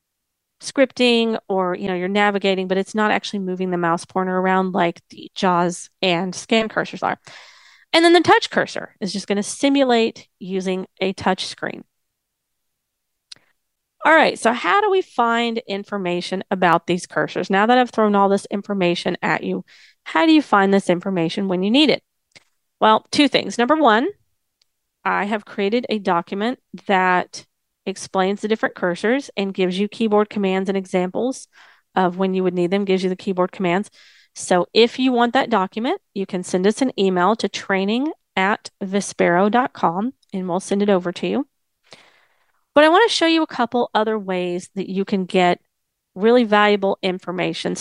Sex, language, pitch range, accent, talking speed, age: female, English, 185-230 Hz, American, 175 wpm, 30-49